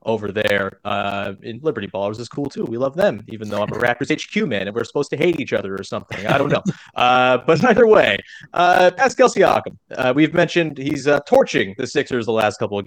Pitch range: 110-150 Hz